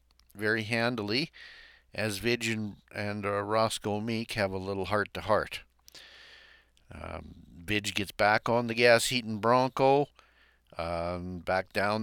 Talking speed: 120 wpm